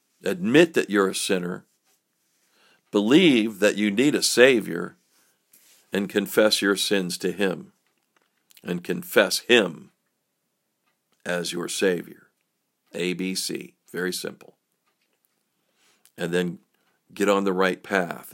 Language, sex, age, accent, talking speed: English, male, 50-69, American, 115 wpm